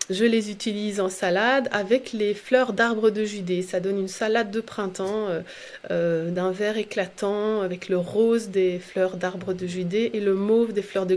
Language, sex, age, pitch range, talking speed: French, female, 30-49, 195-230 Hz, 195 wpm